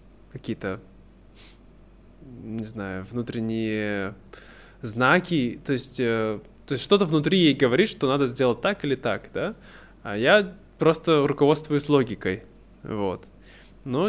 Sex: male